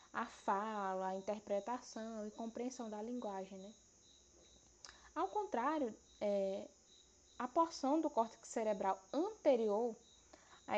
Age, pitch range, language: 10-29, 220-295 Hz, Portuguese